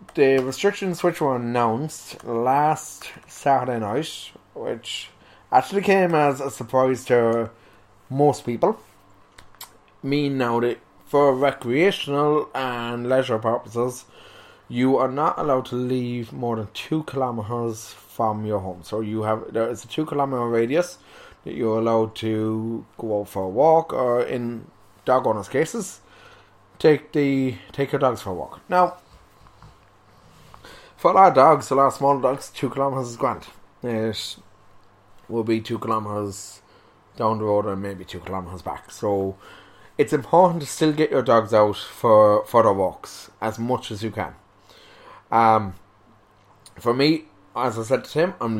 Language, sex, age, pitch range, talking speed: English, male, 20-39, 105-135 Hz, 150 wpm